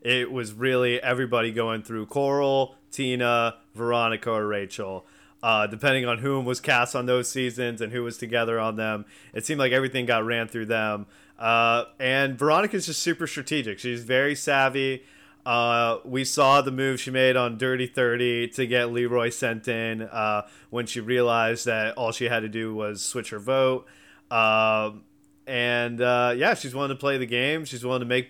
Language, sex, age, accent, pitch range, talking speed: English, male, 30-49, American, 115-140 Hz, 185 wpm